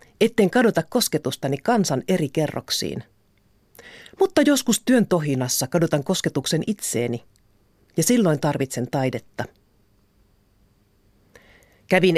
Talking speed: 90 wpm